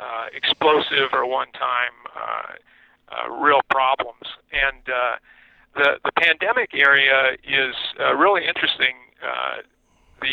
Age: 50-69